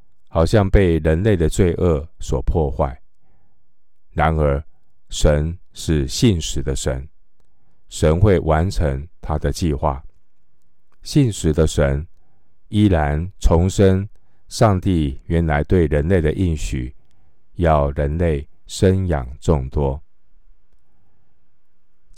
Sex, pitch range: male, 75-90 Hz